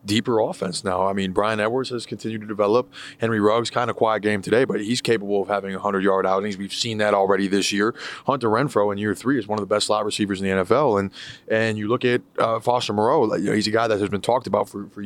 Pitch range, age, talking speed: 105-130 Hz, 20-39, 275 wpm